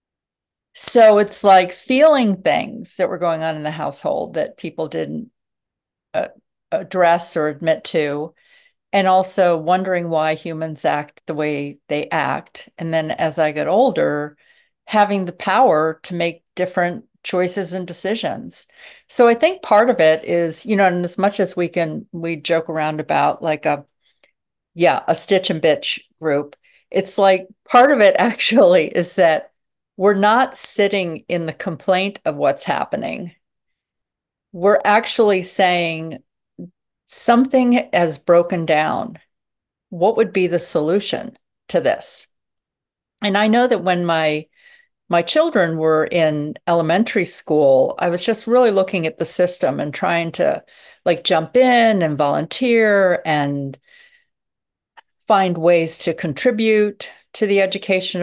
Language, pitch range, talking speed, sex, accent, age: English, 160-210 Hz, 145 wpm, female, American, 50-69